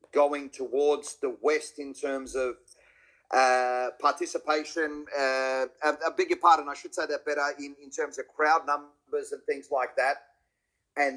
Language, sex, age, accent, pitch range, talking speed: English, male, 30-49, Australian, 135-150 Hz, 165 wpm